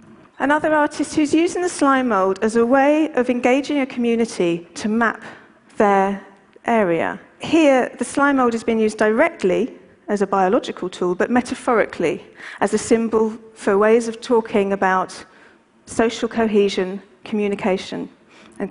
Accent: British